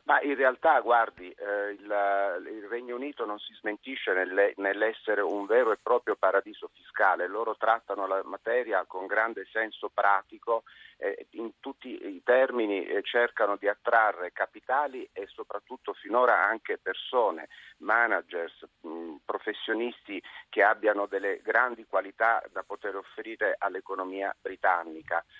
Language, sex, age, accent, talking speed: Italian, male, 40-59, native, 130 wpm